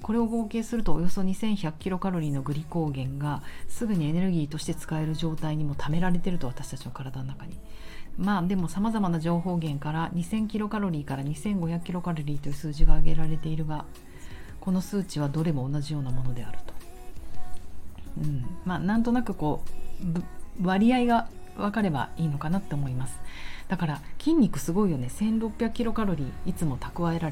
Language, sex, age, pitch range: Japanese, female, 40-59, 135-200 Hz